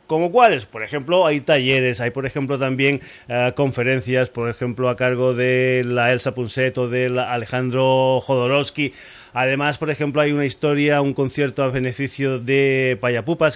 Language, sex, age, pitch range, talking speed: Spanish, male, 30-49, 125-145 Hz, 165 wpm